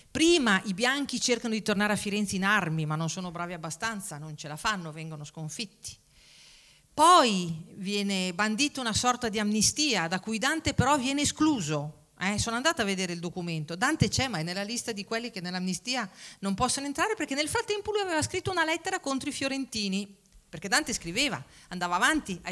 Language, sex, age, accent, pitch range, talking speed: Italian, female, 40-59, native, 175-270 Hz, 190 wpm